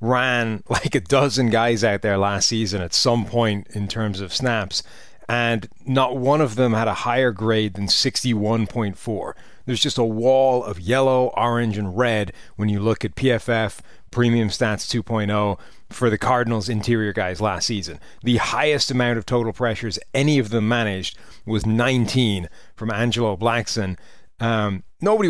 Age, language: 30-49, English